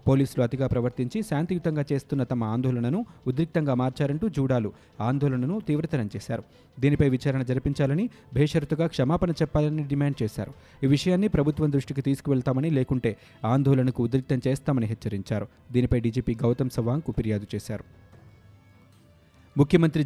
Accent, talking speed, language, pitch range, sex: native, 115 wpm, Telugu, 120-145 Hz, male